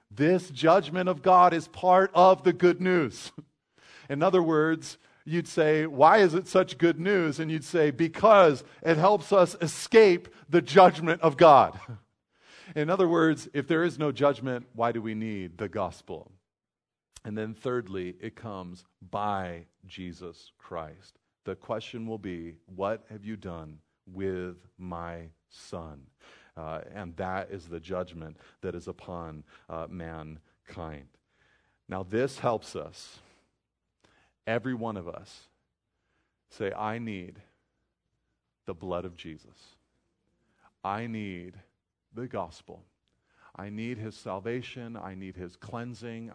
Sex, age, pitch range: male, 40-59, 90-150 Hz